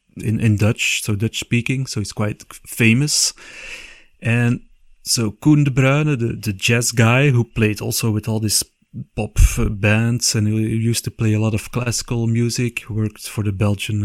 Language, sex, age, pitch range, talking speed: English, male, 30-49, 105-130 Hz, 175 wpm